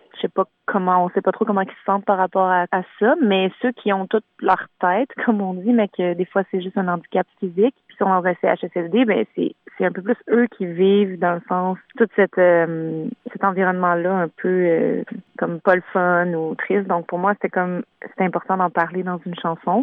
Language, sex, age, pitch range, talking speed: French, female, 30-49, 175-200 Hz, 235 wpm